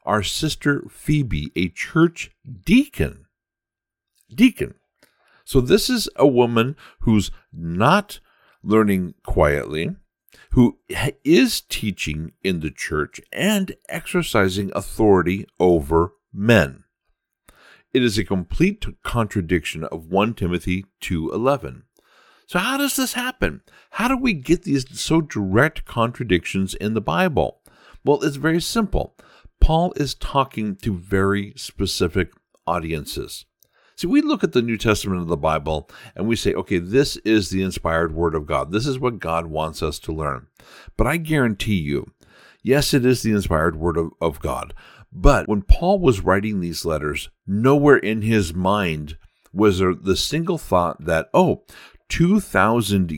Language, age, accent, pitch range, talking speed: English, 60-79, American, 85-140 Hz, 140 wpm